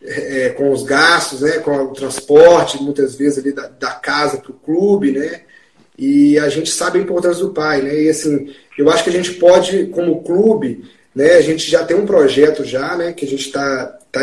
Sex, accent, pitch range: male, Brazilian, 155-230 Hz